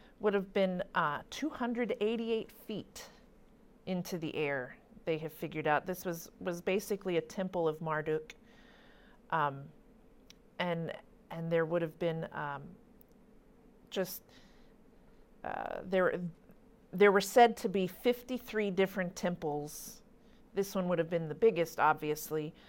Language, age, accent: English, 40-59, American